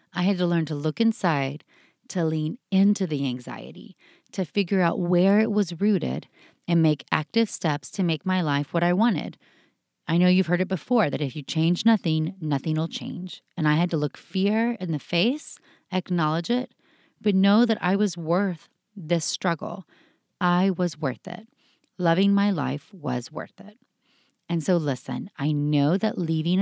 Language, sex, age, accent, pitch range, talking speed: English, female, 30-49, American, 165-205 Hz, 180 wpm